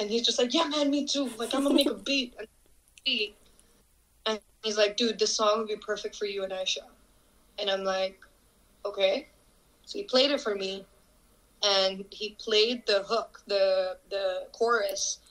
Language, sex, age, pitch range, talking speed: English, female, 20-39, 195-230 Hz, 180 wpm